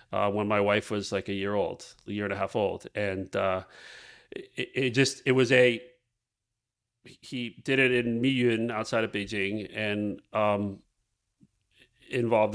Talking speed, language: 165 wpm, English